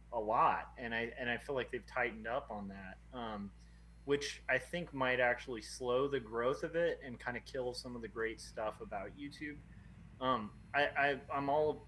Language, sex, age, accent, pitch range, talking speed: English, male, 20-39, American, 110-135 Hz, 195 wpm